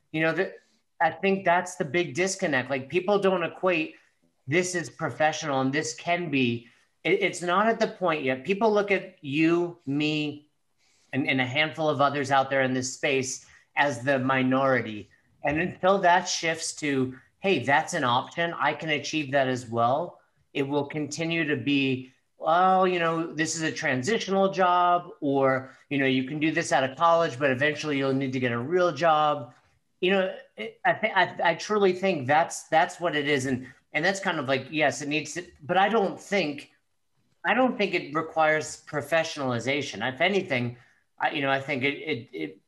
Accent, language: American, English